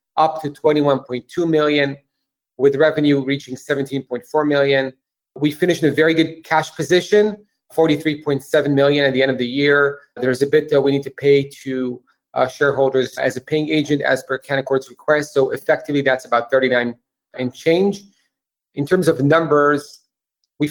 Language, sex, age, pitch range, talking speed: English, male, 30-49, 135-160 Hz, 160 wpm